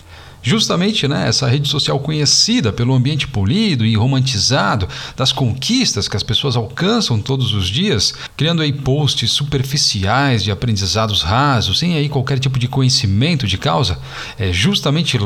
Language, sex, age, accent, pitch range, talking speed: Portuguese, male, 40-59, Brazilian, 115-145 Hz, 140 wpm